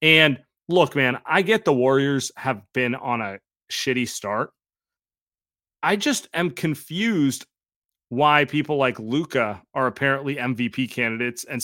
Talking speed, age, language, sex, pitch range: 135 wpm, 30-49, English, male, 125-170 Hz